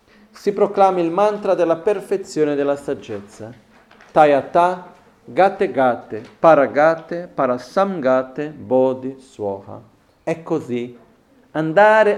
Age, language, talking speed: 50-69, Italian, 60 wpm